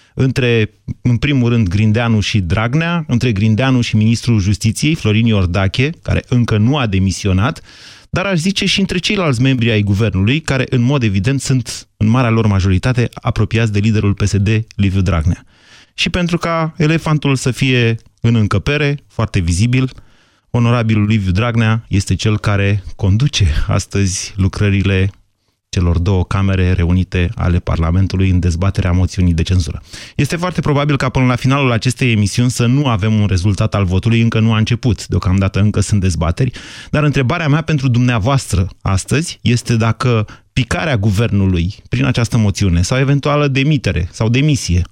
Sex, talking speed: male, 155 wpm